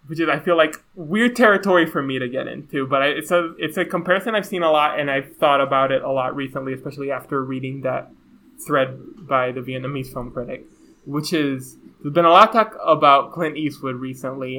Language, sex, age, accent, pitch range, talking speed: English, male, 20-39, American, 135-160 Hz, 210 wpm